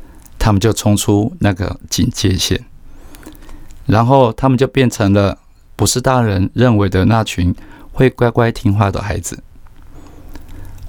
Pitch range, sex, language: 95-115 Hz, male, Chinese